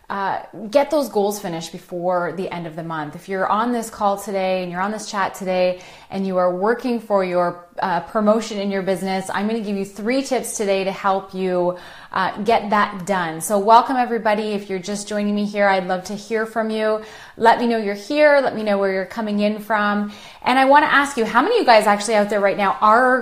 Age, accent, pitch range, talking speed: 30-49, American, 195-235 Hz, 240 wpm